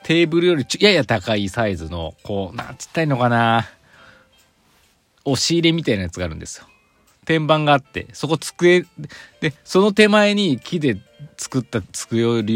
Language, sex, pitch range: Japanese, male, 95-140 Hz